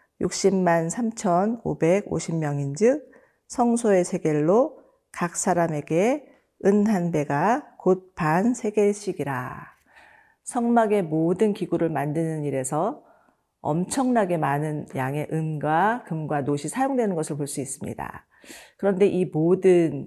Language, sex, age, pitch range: Korean, female, 40-59, 155-205 Hz